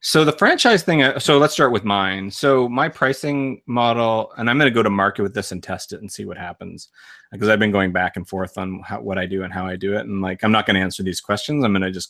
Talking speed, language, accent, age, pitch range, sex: 295 wpm, English, American, 30-49, 95-120 Hz, male